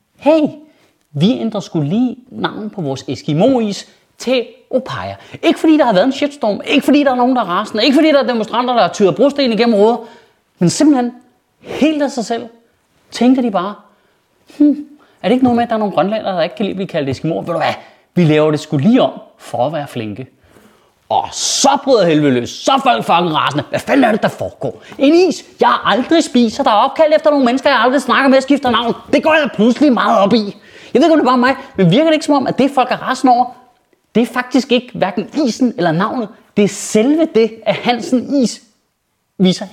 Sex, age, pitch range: male, 30-49, 220-300 Hz